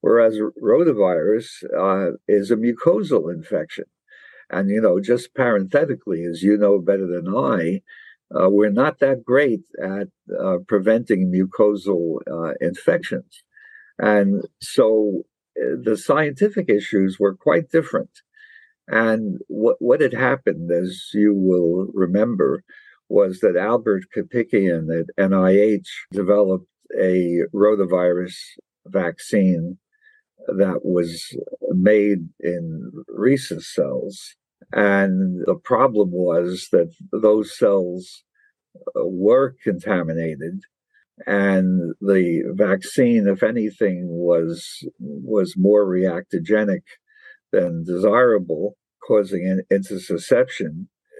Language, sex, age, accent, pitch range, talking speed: English, male, 60-79, American, 95-135 Hz, 100 wpm